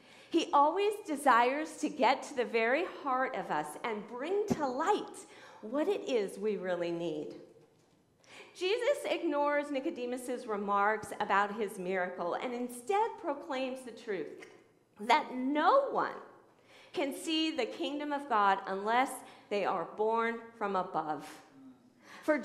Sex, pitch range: female, 230-375 Hz